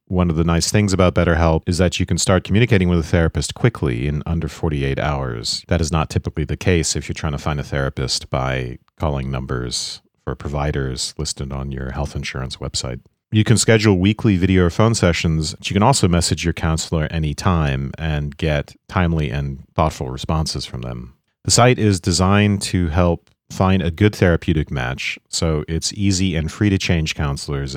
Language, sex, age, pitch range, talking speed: English, male, 40-59, 75-95 Hz, 190 wpm